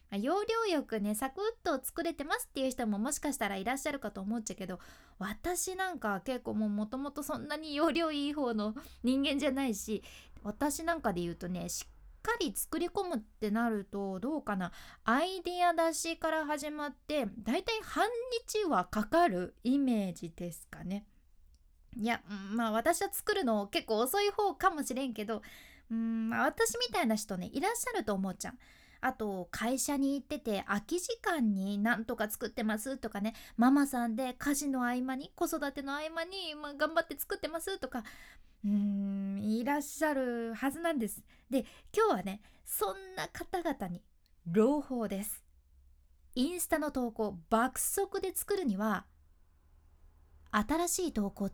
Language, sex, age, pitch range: Japanese, female, 20-39, 210-330 Hz